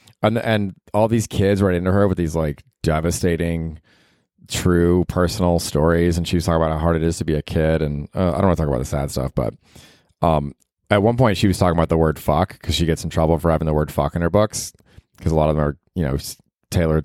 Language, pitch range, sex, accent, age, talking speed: English, 80-105 Hz, male, American, 30-49, 260 wpm